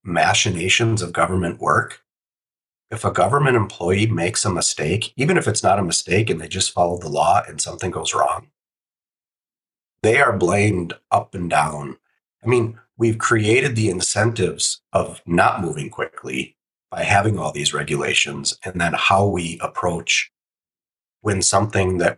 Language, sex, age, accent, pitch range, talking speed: English, male, 40-59, American, 90-110 Hz, 150 wpm